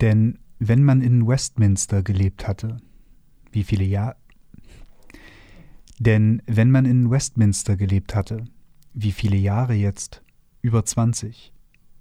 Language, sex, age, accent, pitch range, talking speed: German, male, 40-59, German, 105-125 Hz, 65 wpm